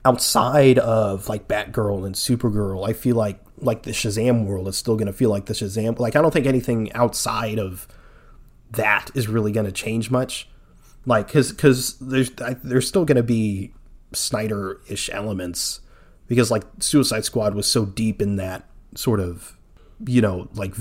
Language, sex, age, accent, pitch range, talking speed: English, male, 30-49, American, 100-125 Hz, 170 wpm